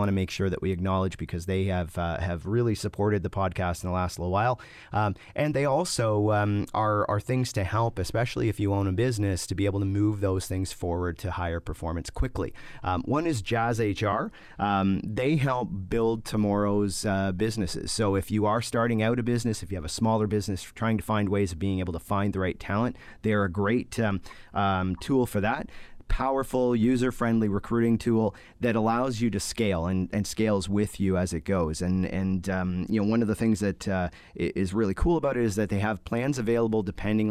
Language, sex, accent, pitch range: English, male, American, 95-115 Hz